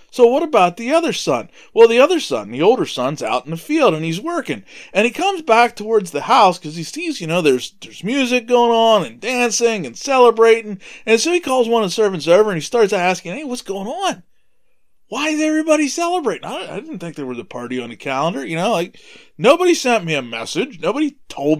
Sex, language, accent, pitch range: male, English, American, 155-260 Hz